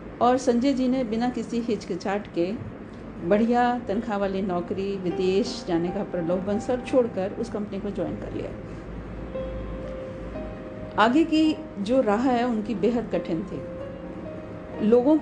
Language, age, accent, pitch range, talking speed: Hindi, 50-69, native, 185-245 Hz, 140 wpm